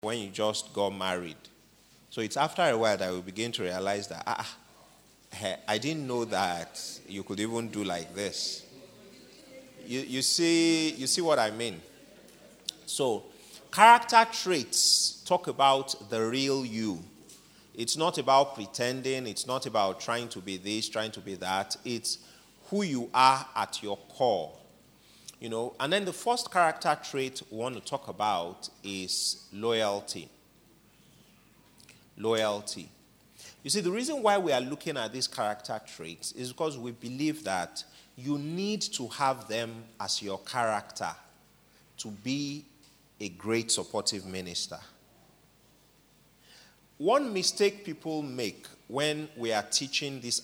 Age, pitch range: 30-49, 105-150 Hz